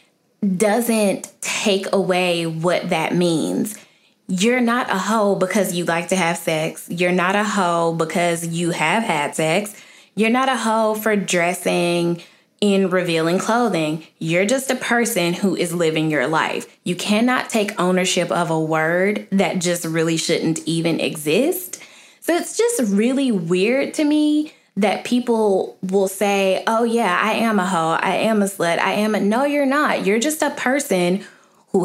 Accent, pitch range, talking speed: American, 175-225 Hz, 165 wpm